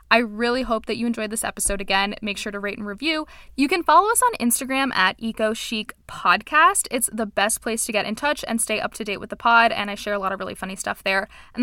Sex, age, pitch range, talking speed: female, 10-29, 200-235 Hz, 260 wpm